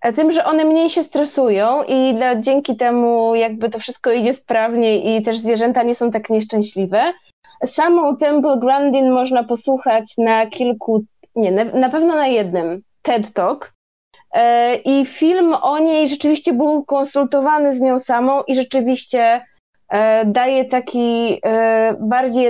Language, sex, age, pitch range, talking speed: Polish, female, 20-39, 230-285 Hz, 135 wpm